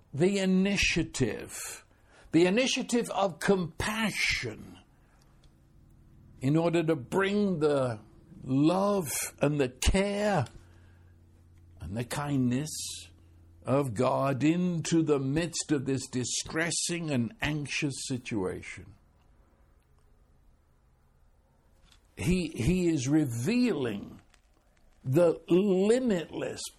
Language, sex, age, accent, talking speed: English, male, 60-79, American, 80 wpm